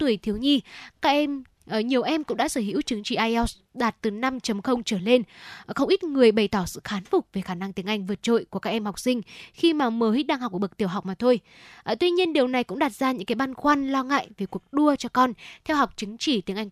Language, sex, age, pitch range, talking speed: Vietnamese, female, 10-29, 210-265 Hz, 265 wpm